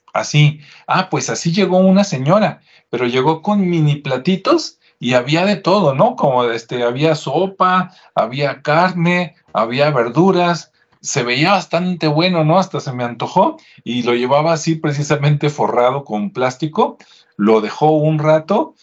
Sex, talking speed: male, 145 wpm